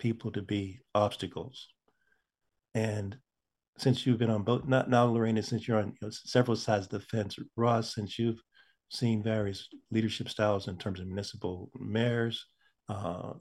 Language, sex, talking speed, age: English, male, 160 wpm, 50-69